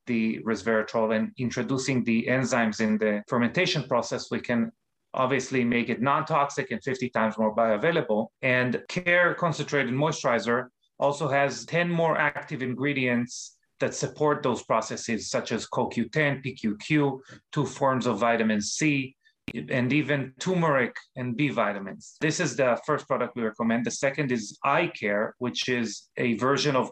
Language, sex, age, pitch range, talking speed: English, male, 30-49, 120-145 Hz, 150 wpm